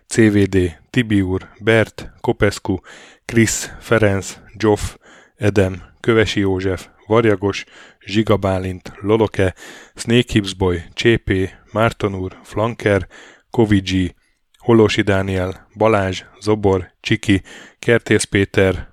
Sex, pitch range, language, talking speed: male, 95-110 Hz, Hungarian, 80 wpm